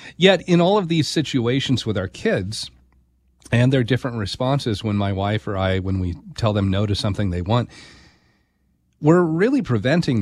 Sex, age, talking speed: male, 40-59, 175 wpm